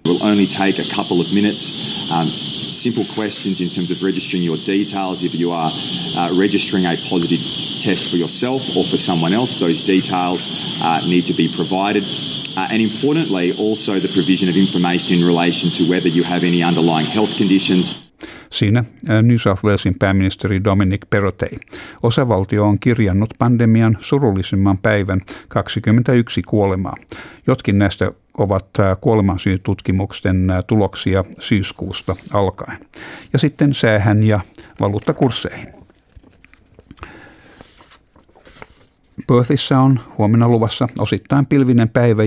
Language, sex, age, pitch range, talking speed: Finnish, male, 30-49, 95-115 Hz, 130 wpm